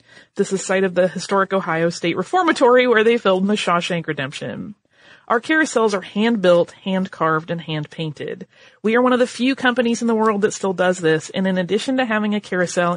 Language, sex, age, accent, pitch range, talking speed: English, female, 30-49, American, 175-225 Hz, 200 wpm